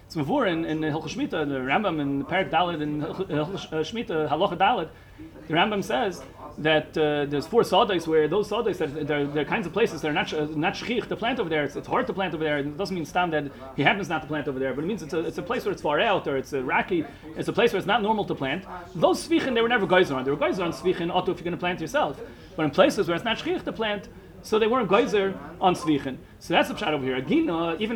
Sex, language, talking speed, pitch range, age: male, English, 275 wpm, 155-205 Hz, 30-49